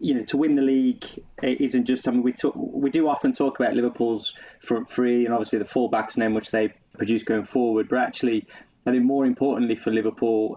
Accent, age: British, 20-39